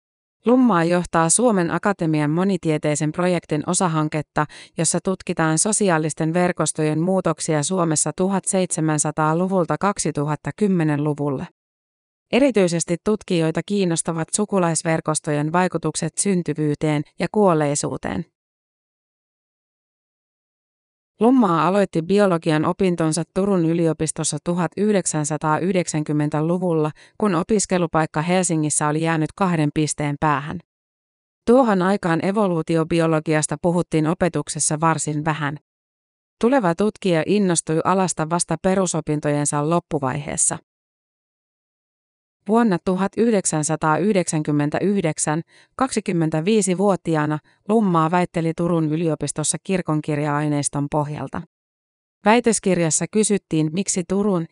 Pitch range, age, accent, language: 155-185 Hz, 30-49, native, Finnish